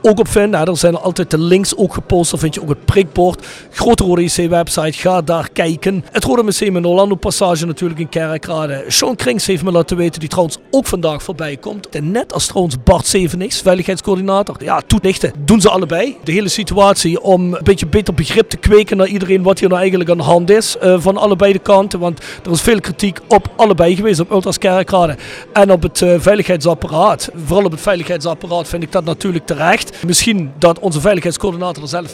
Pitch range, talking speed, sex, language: 170-200 Hz, 205 wpm, male, Dutch